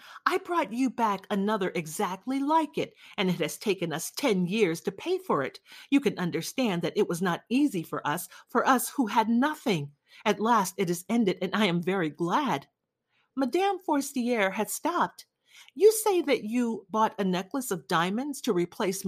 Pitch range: 180-280 Hz